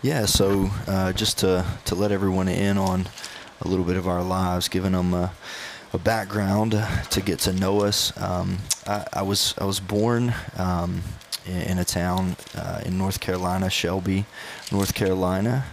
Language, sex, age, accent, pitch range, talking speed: English, male, 20-39, American, 90-100 Hz, 170 wpm